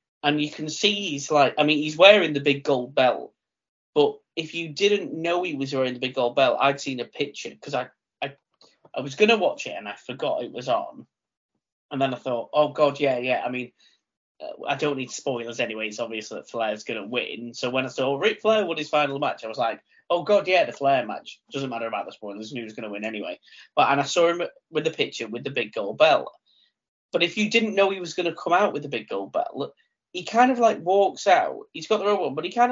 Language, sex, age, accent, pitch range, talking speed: English, male, 20-39, British, 135-190 Hz, 260 wpm